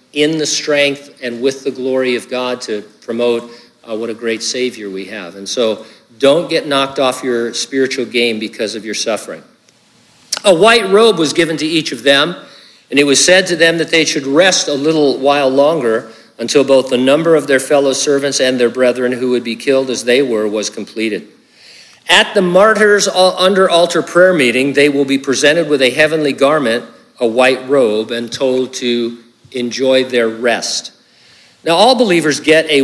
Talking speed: 190 wpm